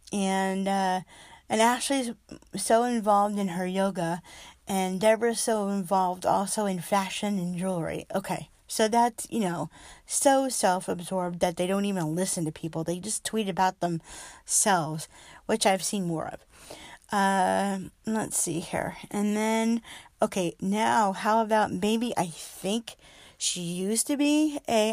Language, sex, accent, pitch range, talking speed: English, female, American, 180-225 Hz, 145 wpm